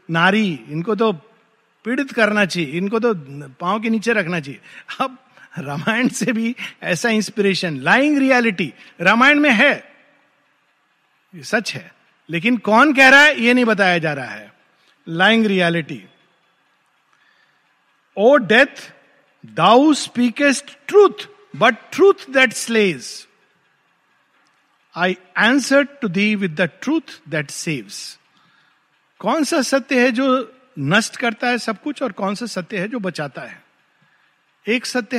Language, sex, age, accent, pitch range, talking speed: Hindi, male, 50-69, native, 185-255 Hz, 135 wpm